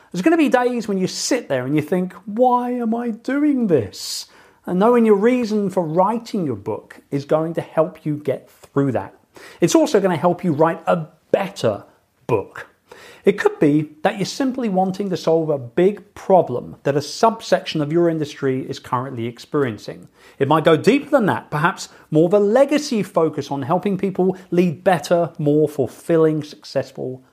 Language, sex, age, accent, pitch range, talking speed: English, male, 40-59, British, 145-225 Hz, 185 wpm